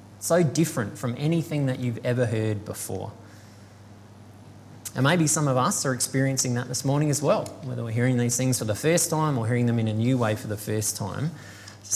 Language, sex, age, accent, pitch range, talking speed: English, male, 20-39, Australian, 105-135 Hz, 210 wpm